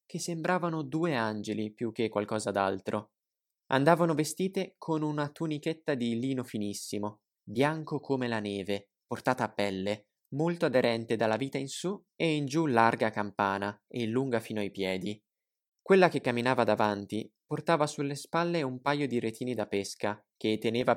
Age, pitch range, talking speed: 20-39, 105-145 Hz, 155 wpm